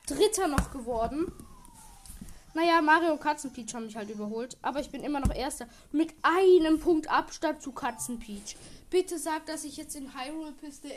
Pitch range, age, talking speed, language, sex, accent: 235-320 Hz, 10-29, 165 wpm, German, female, German